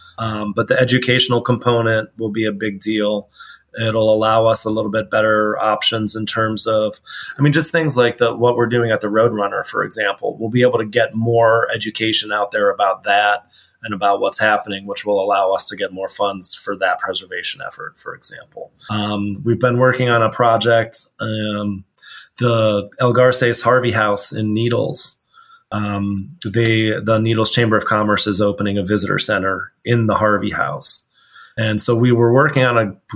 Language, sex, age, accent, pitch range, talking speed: English, male, 30-49, American, 105-120 Hz, 185 wpm